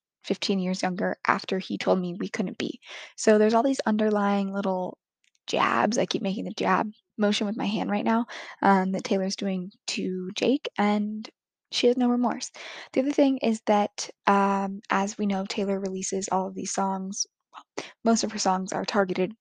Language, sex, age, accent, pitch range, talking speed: English, female, 10-29, American, 185-215 Hz, 185 wpm